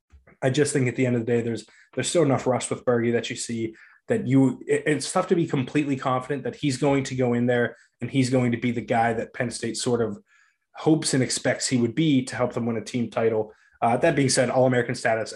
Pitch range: 115-140 Hz